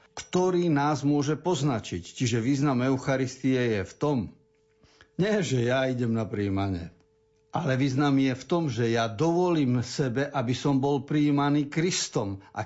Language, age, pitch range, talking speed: Slovak, 50-69, 115-155 Hz, 145 wpm